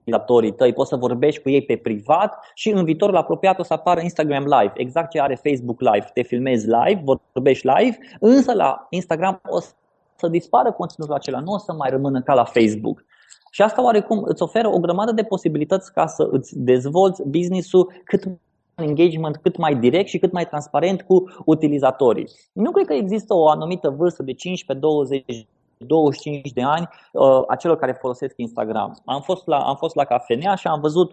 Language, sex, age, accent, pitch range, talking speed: Romanian, male, 20-39, native, 135-185 Hz, 185 wpm